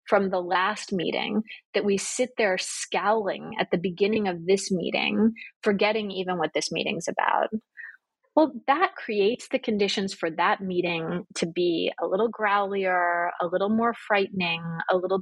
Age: 30-49